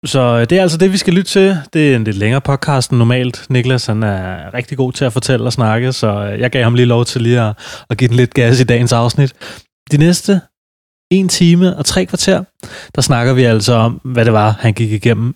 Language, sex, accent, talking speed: Danish, male, native, 240 wpm